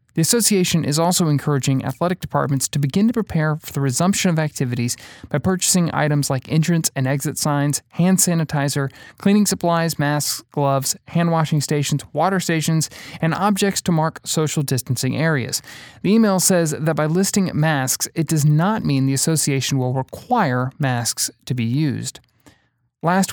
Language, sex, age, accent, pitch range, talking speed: English, male, 30-49, American, 130-170 Hz, 160 wpm